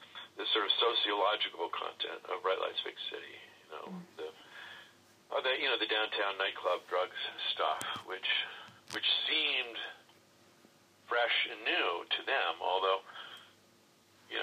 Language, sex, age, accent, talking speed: English, male, 50-69, American, 135 wpm